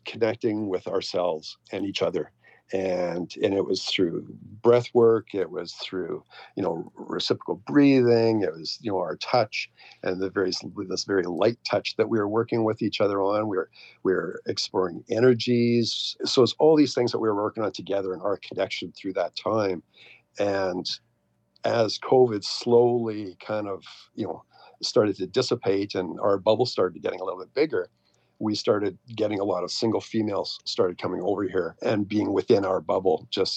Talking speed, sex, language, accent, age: 180 wpm, male, English, American, 50-69